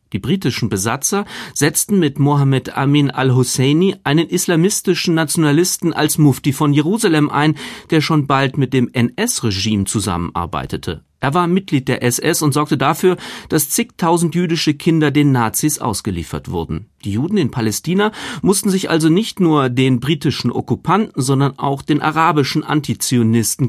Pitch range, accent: 130-170 Hz, German